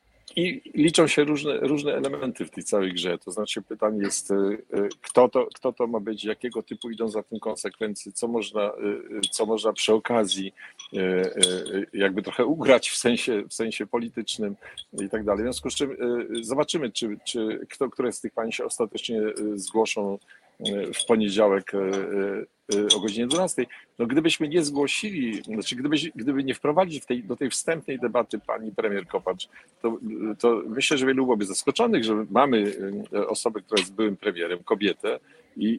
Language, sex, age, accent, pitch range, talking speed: Polish, male, 50-69, native, 105-135 Hz, 165 wpm